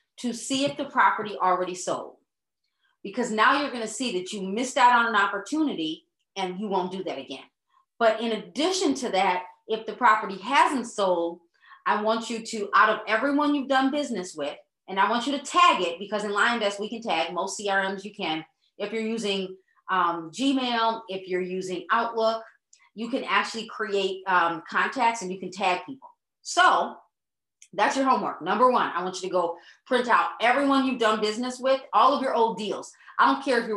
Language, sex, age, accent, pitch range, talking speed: English, female, 30-49, American, 185-235 Hz, 195 wpm